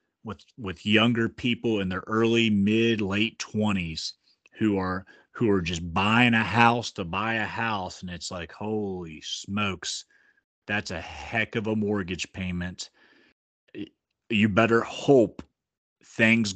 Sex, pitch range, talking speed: male, 100-125 Hz, 140 wpm